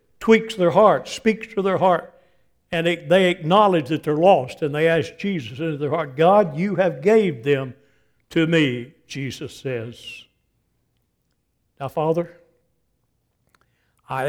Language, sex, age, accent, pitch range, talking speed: English, male, 60-79, American, 125-175 Hz, 140 wpm